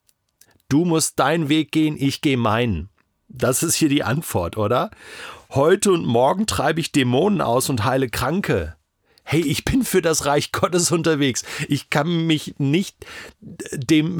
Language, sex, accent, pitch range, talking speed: German, male, German, 110-160 Hz, 155 wpm